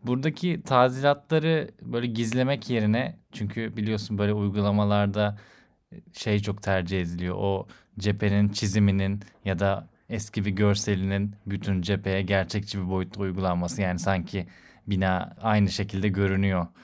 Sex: male